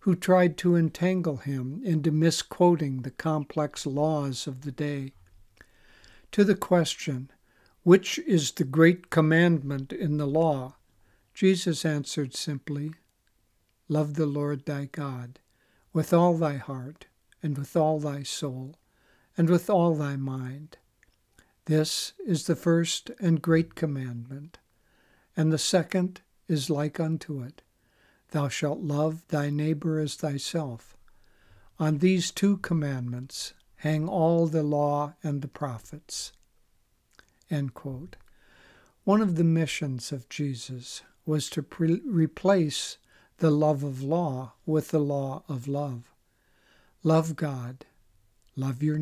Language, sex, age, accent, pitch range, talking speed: English, male, 60-79, American, 140-165 Hz, 120 wpm